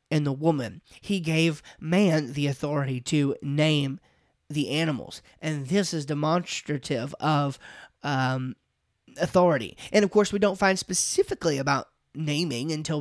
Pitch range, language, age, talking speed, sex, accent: 145-180 Hz, English, 30-49, 135 wpm, male, American